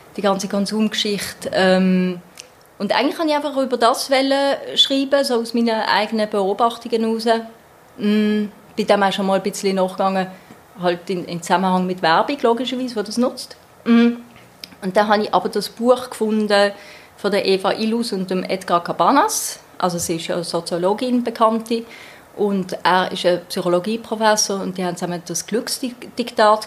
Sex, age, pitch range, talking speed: female, 30-49, 180-225 Hz, 145 wpm